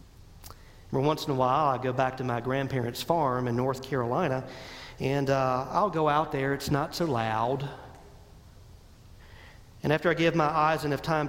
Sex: male